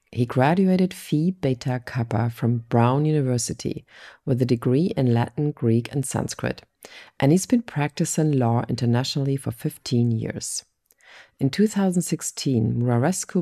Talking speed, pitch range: 125 wpm, 125-155 Hz